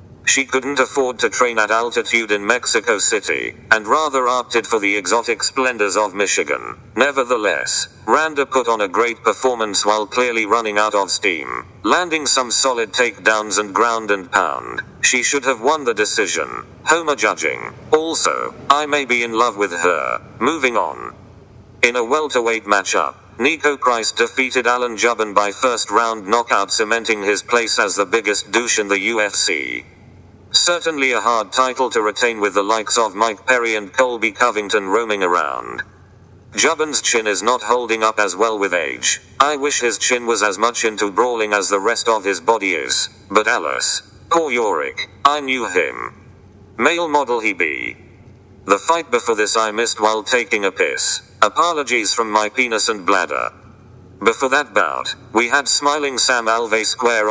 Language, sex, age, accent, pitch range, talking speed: English, male, 40-59, British, 105-135 Hz, 170 wpm